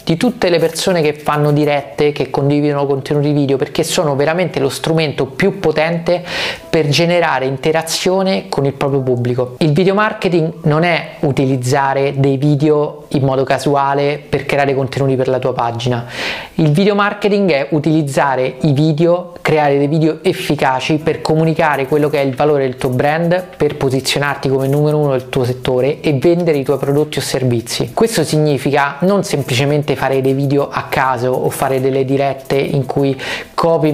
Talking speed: 170 wpm